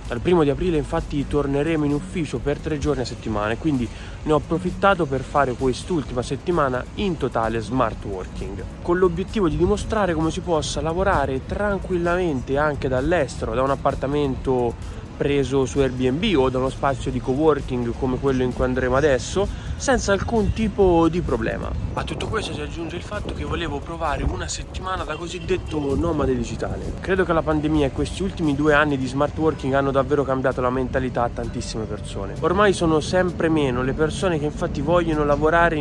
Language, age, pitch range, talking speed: Italian, 20-39, 130-165 Hz, 180 wpm